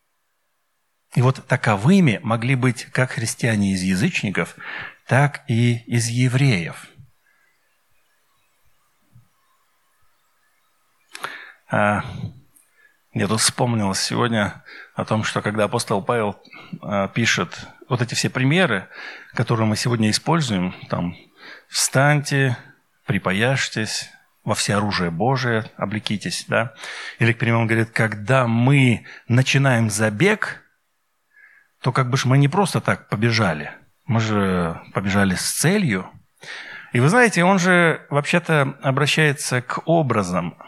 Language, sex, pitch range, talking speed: Russian, male, 110-145 Hz, 105 wpm